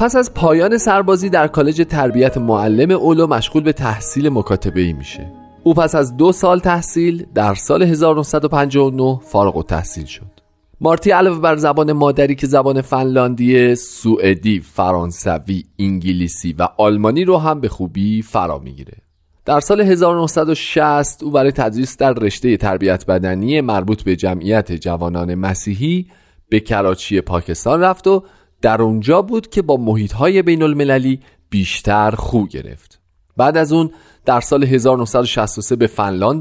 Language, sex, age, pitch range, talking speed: Persian, male, 30-49, 100-160 Hz, 140 wpm